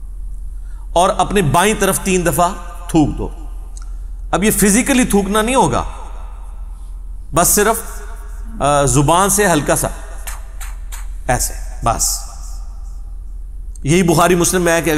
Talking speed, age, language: 110 wpm, 40-59, Urdu